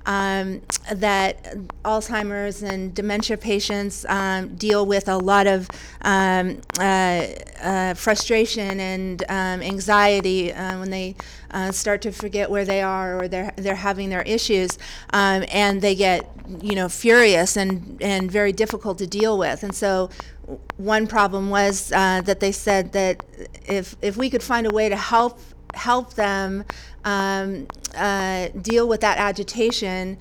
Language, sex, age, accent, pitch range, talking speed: English, female, 30-49, American, 195-210 Hz, 150 wpm